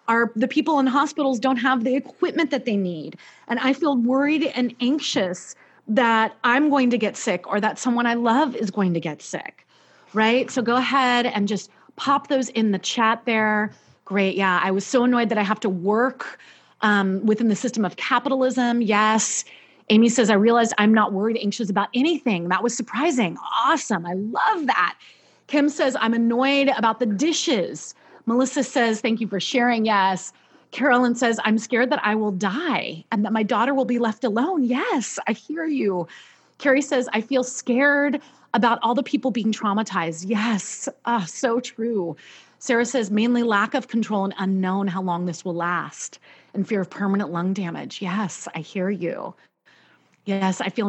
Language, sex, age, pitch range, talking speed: English, female, 30-49, 200-255 Hz, 185 wpm